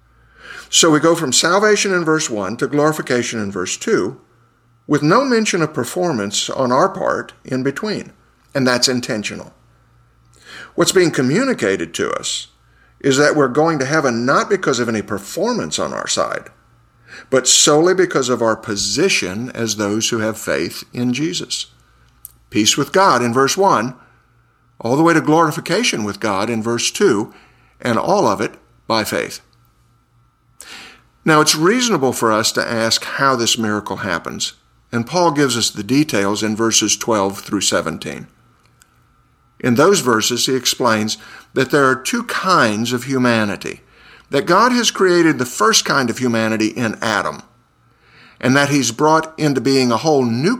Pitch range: 110-155 Hz